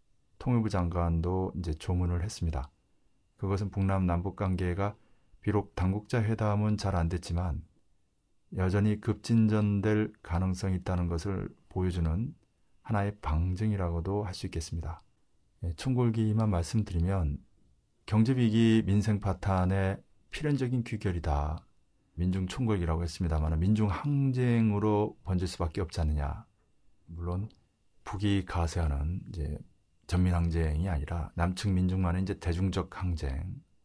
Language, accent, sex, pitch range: Korean, native, male, 85-110 Hz